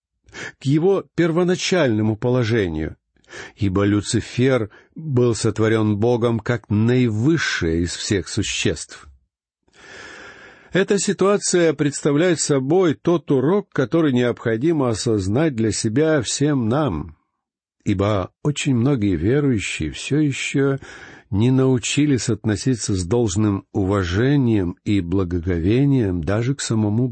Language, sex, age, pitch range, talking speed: Russian, male, 60-79, 105-160 Hz, 95 wpm